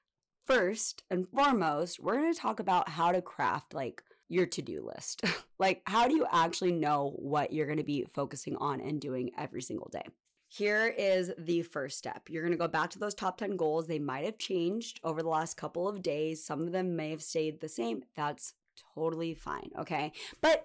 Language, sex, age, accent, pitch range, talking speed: English, female, 20-39, American, 155-195 Hz, 210 wpm